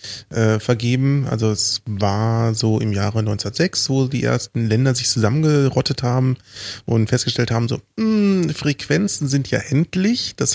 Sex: male